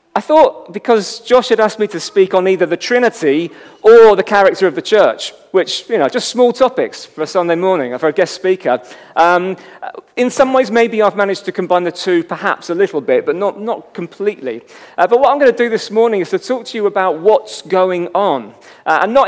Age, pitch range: 40-59, 175-230 Hz